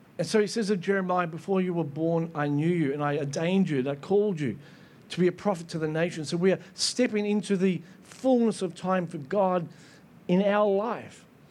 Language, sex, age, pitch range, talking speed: English, male, 50-69, 175-225 Hz, 220 wpm